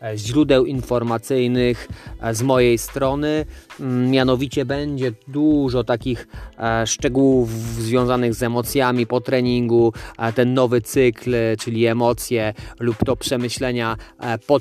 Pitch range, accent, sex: 105-125 Hz, native, male